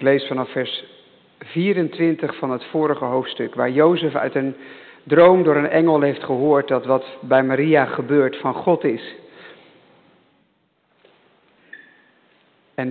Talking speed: 130 wpm